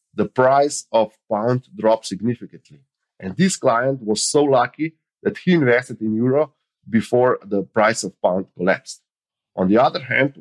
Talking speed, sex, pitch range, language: 155 wpm, male, 100-135 Hz, English